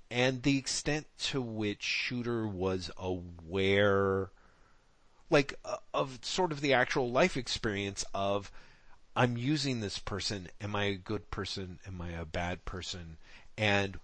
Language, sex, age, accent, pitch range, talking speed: English, male, 40-59, American, 100-130 Hz, 135 wpm